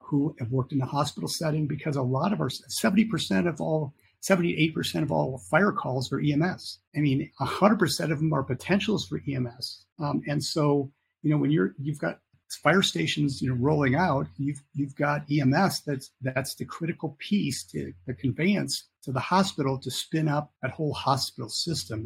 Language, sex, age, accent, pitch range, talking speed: English, male, 50-69, American, 130-155 Hz, 190 wpm